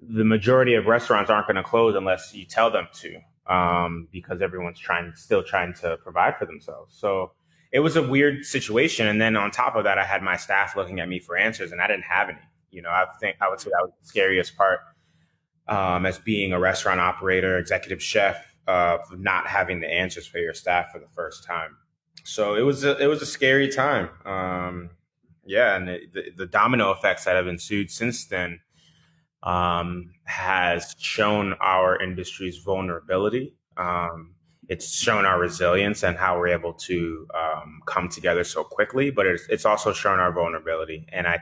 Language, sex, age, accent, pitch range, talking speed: English, male, 20-39, American, 85-110 Hz, 195 wpm